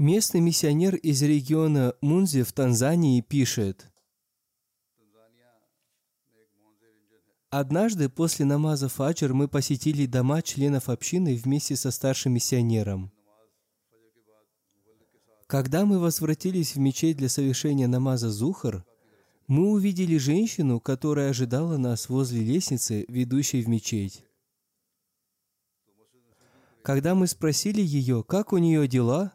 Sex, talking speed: male, 100 wpm